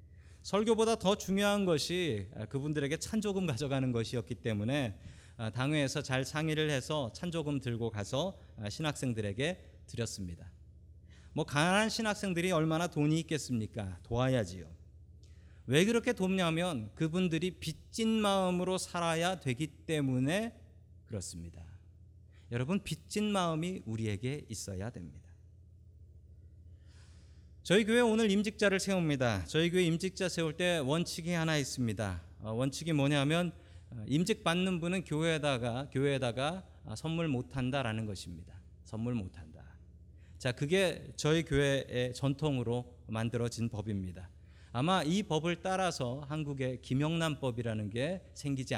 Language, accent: Korean, native